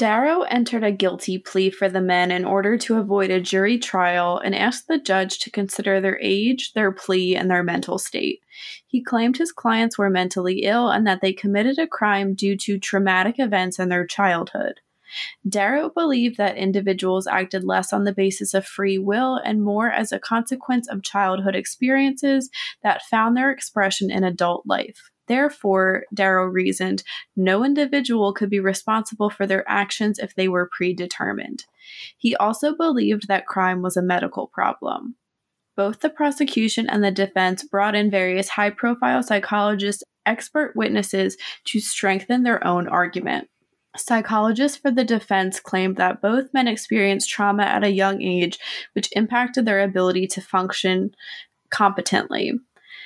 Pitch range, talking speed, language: 190-240 Hz, 155 wpm, English